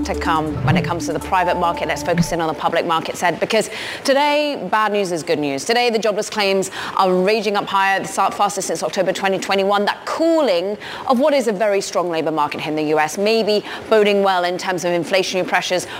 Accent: British